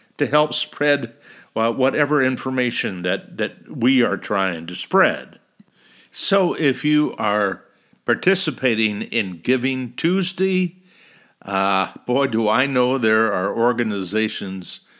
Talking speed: 110 wpm